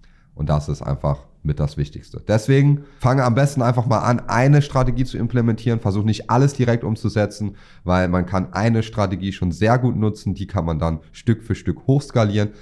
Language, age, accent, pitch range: German, 30-49, German, 80-110 Hz